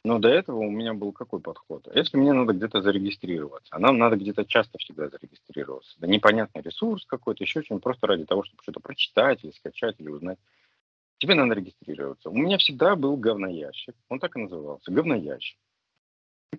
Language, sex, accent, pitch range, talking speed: Russian, male, native, 85-140 Hz, 180 wpm